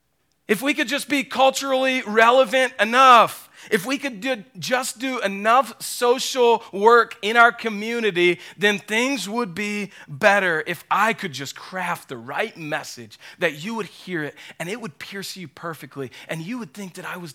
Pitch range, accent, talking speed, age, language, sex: 140-220 Hz, American, 175 wpm, 40-59, English, male